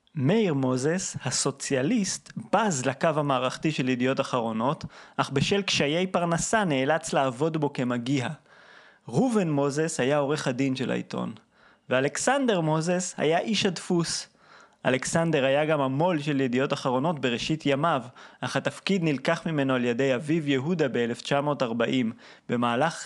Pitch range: 130-170 Hz